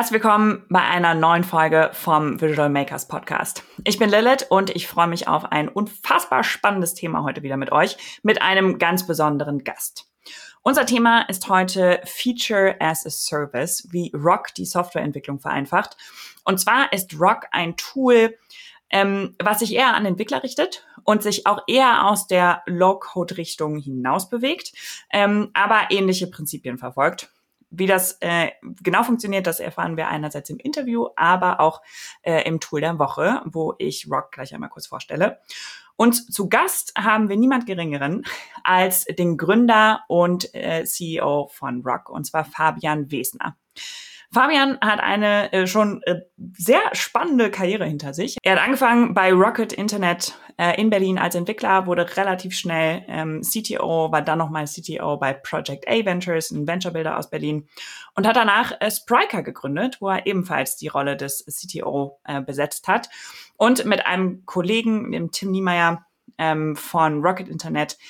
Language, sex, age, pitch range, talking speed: German, female, 20-39, 160-210 Hz, 155 wpm